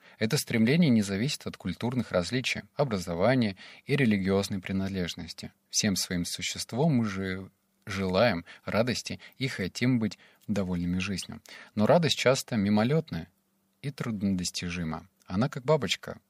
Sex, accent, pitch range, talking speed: male, native, 90-115 Hz, 120 wpm